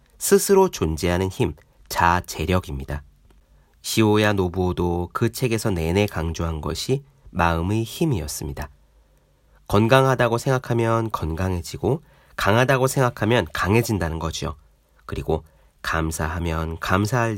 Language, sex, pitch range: Korean, male, 80-115 Hz